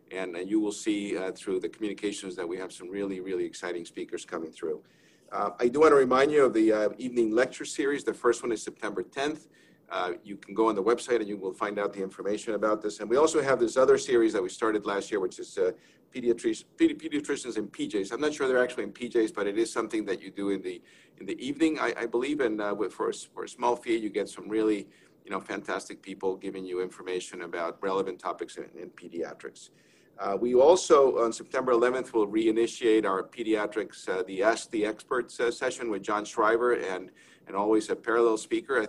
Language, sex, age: English, male, 50-69